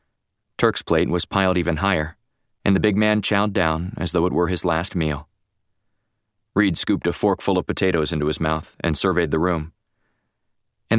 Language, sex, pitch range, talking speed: English, male, 80-110 Hz, 180 wpm